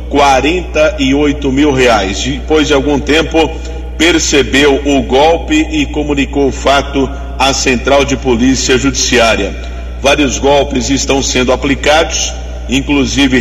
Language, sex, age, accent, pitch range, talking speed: Portuguese, male, 50-69, Brazilian, 120-145 Hz, 110 wpm